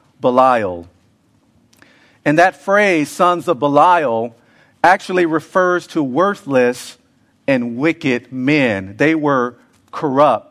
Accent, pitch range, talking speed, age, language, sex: American, 130-170 Hz, 95 wpm, 50-69, English, male